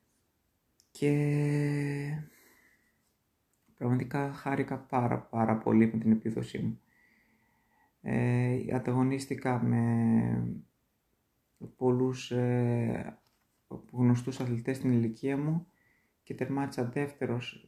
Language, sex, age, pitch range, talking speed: Greek, male, 20-39, 115-130 Hz, 80 wpm